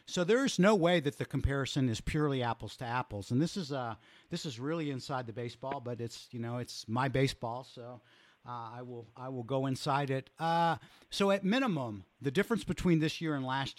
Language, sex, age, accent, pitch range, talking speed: English, male, 50-69, American, 115-155 Hz, 225 wpm